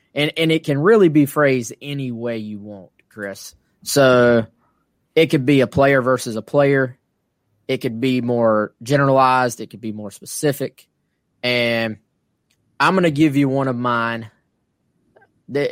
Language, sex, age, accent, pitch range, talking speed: English, male, 20-39, American, 110-140 Hz, 155 wpm